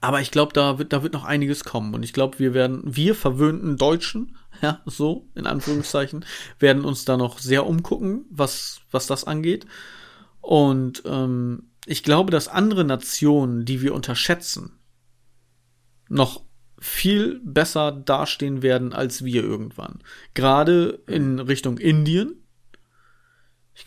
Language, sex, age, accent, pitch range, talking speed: German, male, 40-59, German, 125-160 Hz, 140 wpm